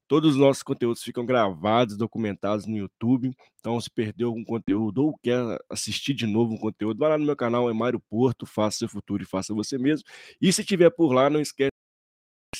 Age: 20-39